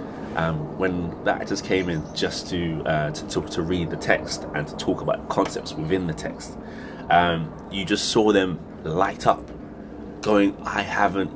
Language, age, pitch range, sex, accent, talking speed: English, 20-39, 85-105 Hz, male, British, 175 wpm